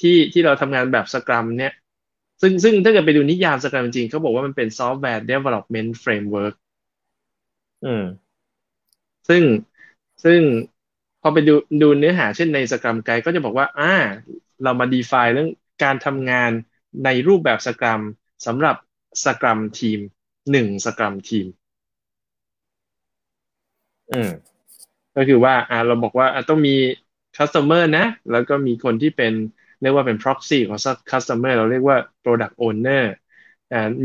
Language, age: Thai, 20-39